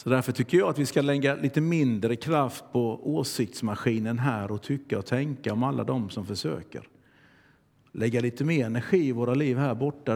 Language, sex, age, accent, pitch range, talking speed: Swedish, male, 50-69, native, 125-155 Hz, 190 wpm